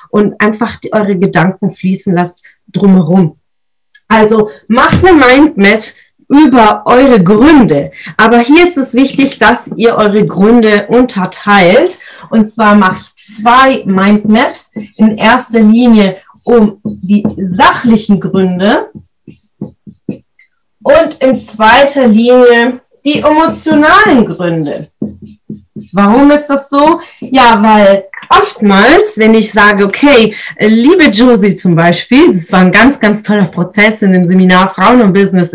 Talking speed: 120 wpm